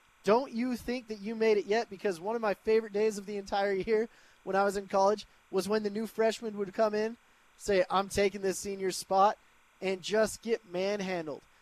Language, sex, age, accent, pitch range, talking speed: English, male, 20-39, American, 185-220 Hz, 210 wpm